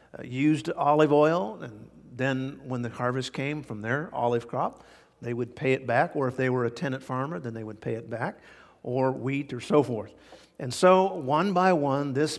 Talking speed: 205 wpm